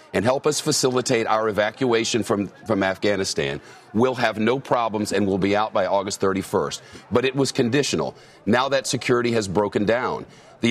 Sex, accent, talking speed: male, American, 175 wpm